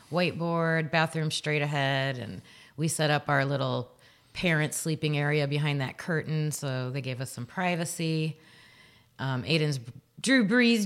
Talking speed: 145 wpm